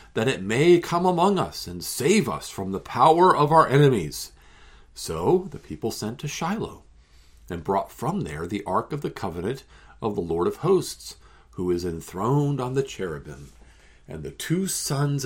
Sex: male